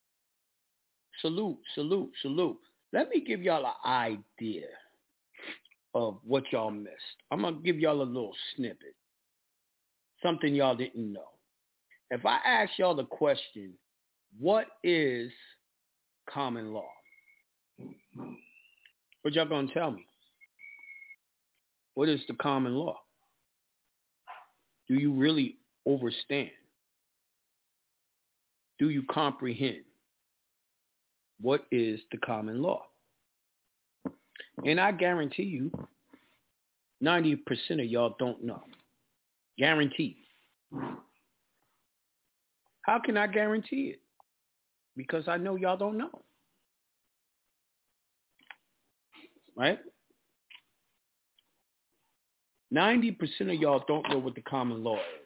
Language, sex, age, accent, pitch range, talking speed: English, male, 50-69, American, 125-195 Hz, 95 wpm